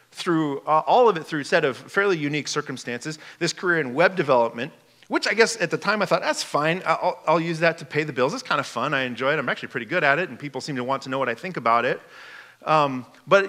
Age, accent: 40-59, American